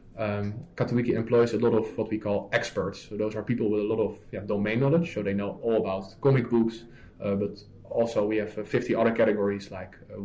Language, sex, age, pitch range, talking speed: English, male, 20-39, 105-120 Hz, 220 wpm